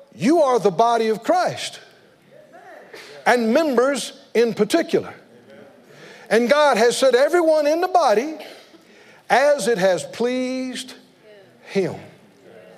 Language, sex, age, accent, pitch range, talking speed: English, male, 60-79, American, 180-255 Hz, 110 wpm